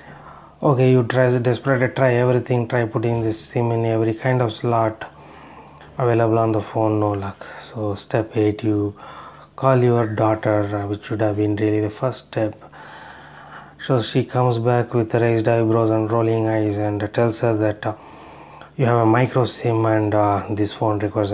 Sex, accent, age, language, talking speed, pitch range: male, Indian, 30-49, English, 170 wpm, 105-125 Hz